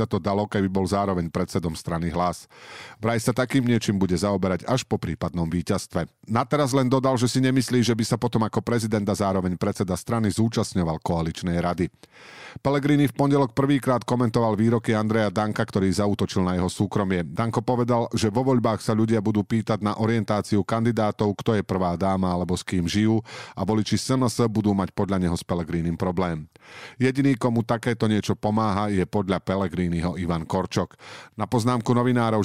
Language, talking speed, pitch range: Slovak, 175 wpm, 95-120 Hz